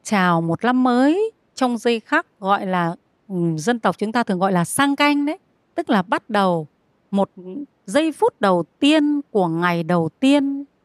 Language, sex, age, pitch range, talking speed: Vietnamese, female, 30-49, 190-280 Hz, 175 wpm